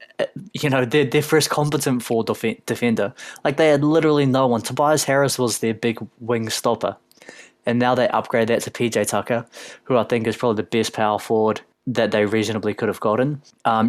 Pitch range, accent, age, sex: 110-125 Hz, Australian, 20-39, male